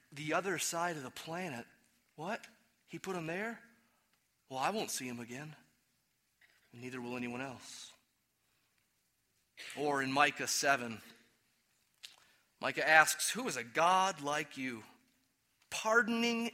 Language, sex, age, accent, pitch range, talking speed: English, male, 30-49, American, 120-205 Hz, 125 wpm